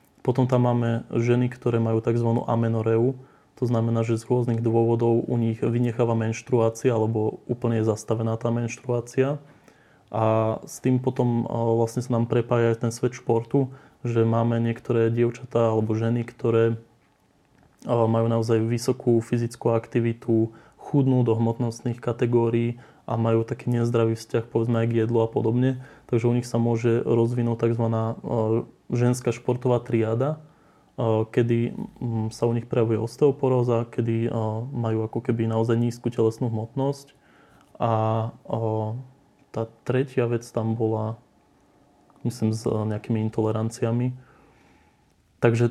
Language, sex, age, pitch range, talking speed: Slovak, male, 20-39, 115-125 Hz, 125 wpm